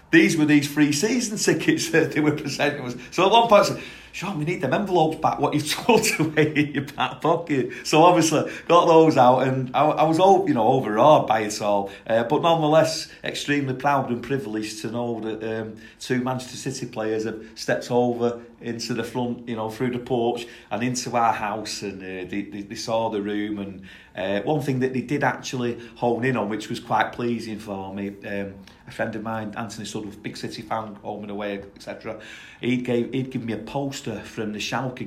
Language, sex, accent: English, male, British